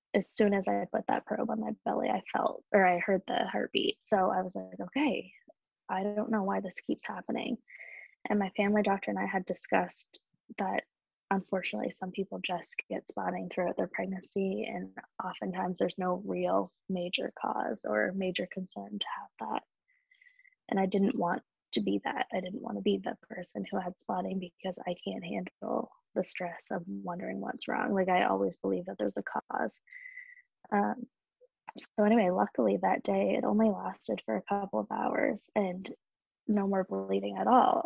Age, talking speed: 20-39, 180 wpm